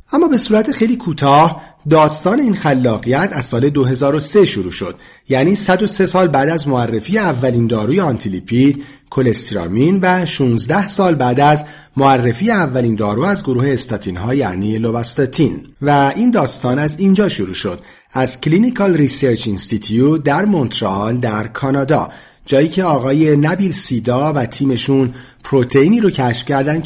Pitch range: 120-170 Hz